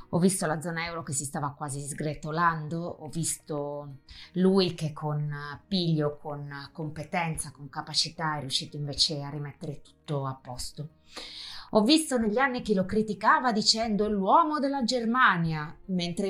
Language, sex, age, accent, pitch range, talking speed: Italian, female, 20-39, native, 145-175 Hz, 145 wpm